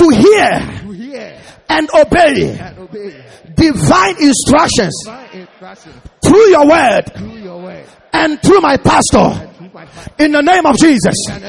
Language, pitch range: English, 265-345 Hz